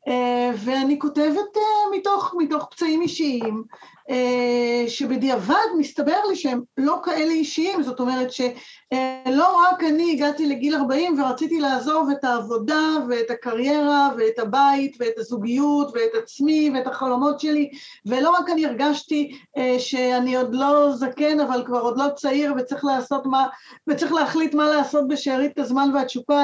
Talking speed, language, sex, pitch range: 150 wpm, Hebrew, female, 255-310 Hz